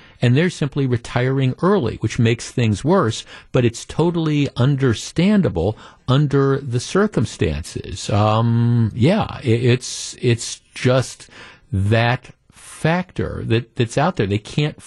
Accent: American